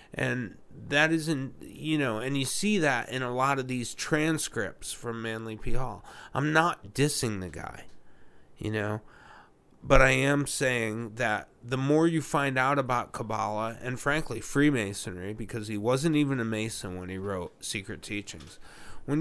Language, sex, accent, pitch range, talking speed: English, male, American, 110-135 Hz, 165 wpm